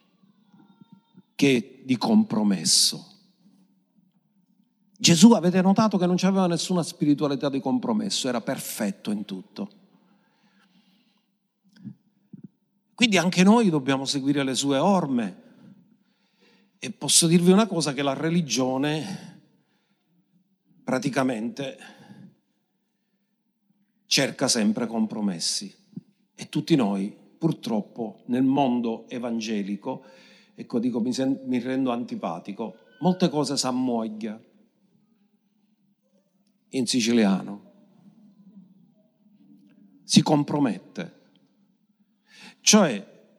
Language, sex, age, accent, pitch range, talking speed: Italian, male, 50-69, native, 165-215 Hz, 80 wpm